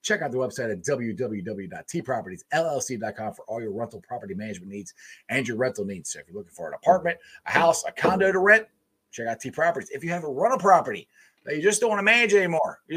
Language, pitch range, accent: English, 150-220 Hz, American